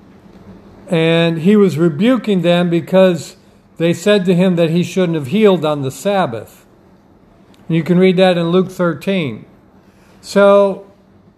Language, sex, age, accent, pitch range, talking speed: English, male, 60-79, American, 160-195 Hz, 135 wpm